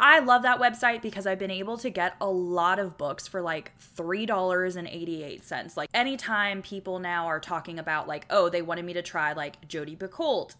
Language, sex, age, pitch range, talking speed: English, female, 20-39, 155-200 Hz, 195 wpm